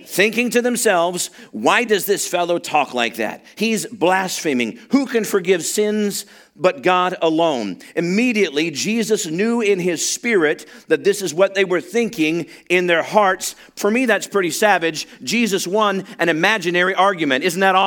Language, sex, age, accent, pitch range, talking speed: English, male, 50-69, American, 170-220 Hz, 160 wpm